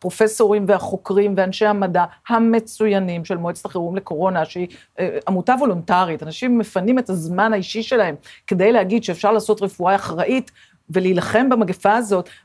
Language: Hebrew